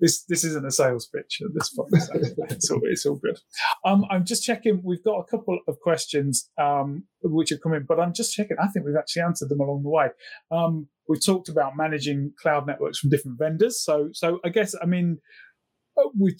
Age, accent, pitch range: 30-49, British, 140-165 Hz